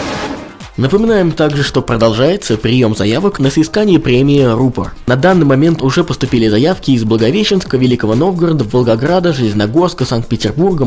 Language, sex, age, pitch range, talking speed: Russian, male, 20-39, 115-165 Hz, 125 wpm